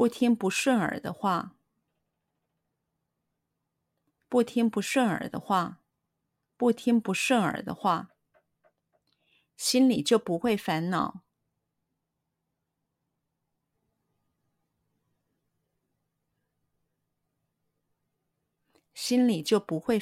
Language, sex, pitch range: Chinese, female, 180-235 Hz